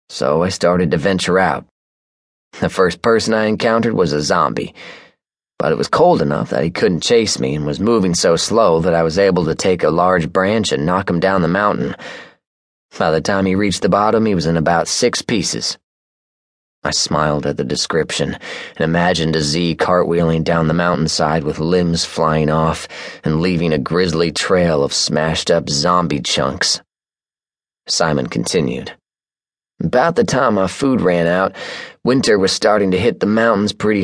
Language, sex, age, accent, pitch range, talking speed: English, male, 30-49, American, 80-100 Hz, 180 wpm